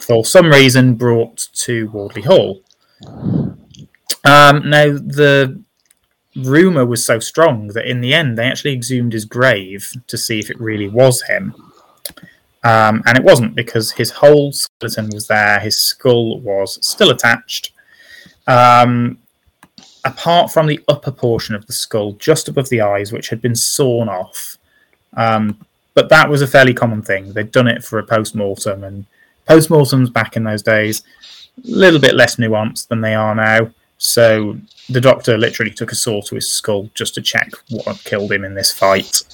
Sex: male